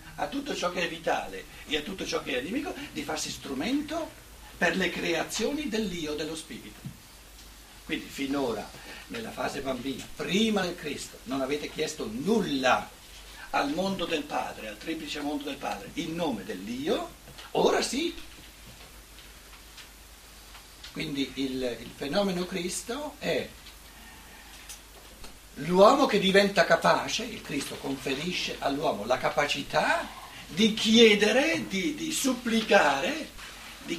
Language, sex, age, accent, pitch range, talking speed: Italian, male, 60-79, native, 145-230 Hz, 125 wpm